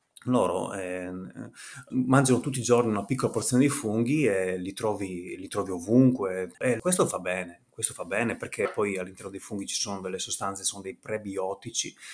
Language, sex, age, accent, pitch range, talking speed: Italian, male, 30-49, native, 95-125 Hz, 180 wpm